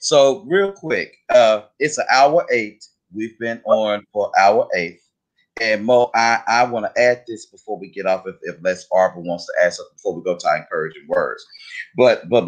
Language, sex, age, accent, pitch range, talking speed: English, male, 30-49, American, 95-125 Hz, 200 wpm